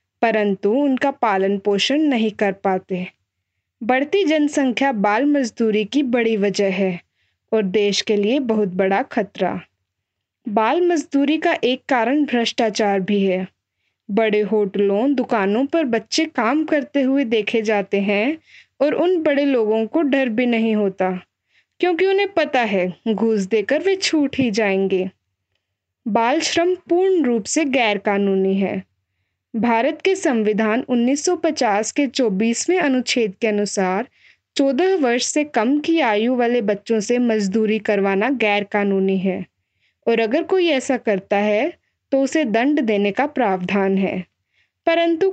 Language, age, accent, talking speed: Hindi, 20-39, native, 140 wpm